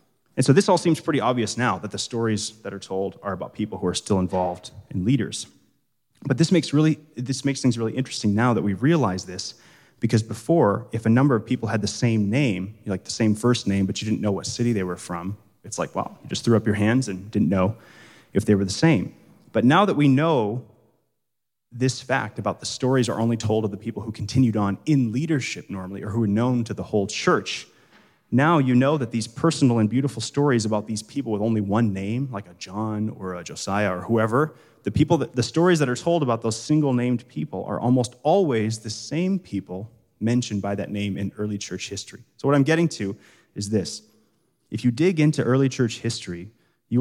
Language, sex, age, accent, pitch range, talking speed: English, male, 30-49, American, 100-130 Hz, 220 wpm